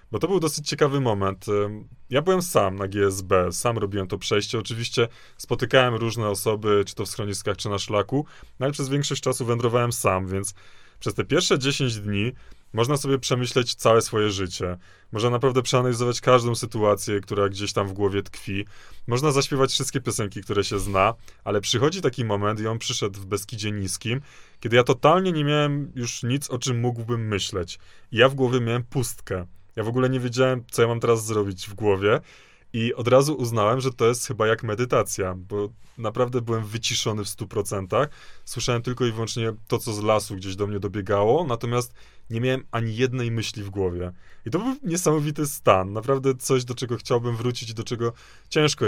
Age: 20-39